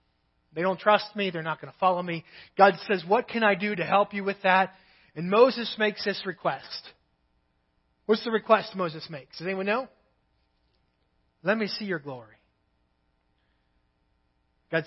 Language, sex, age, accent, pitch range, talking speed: English, male, 30-49, American, 140-190 Hz, 160 wpm